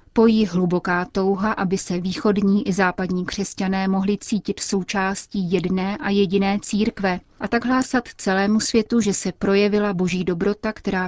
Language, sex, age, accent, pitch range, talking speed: Czech, female, 30-49, native, 185-210 Hz, 150 wpm